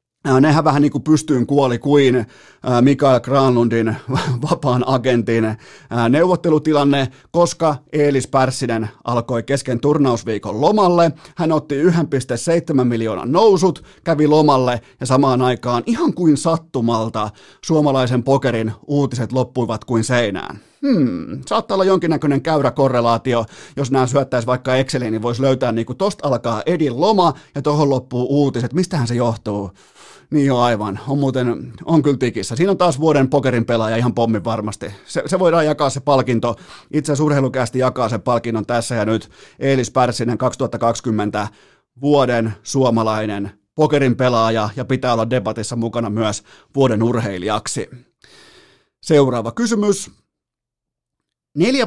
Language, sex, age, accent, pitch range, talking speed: Finnish, male, 30-49, native, 120-150 Hz, 130 wpm